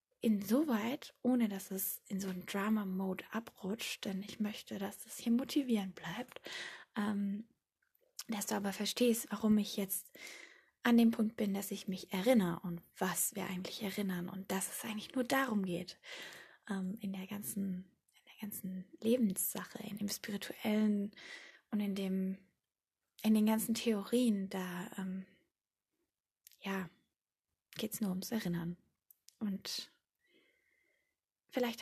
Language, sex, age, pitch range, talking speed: German, female, 20-39, 190-235 Hz, 140 wpm